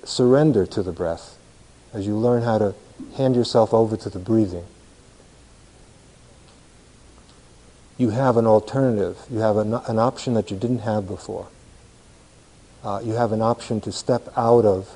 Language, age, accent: English, 50-69, American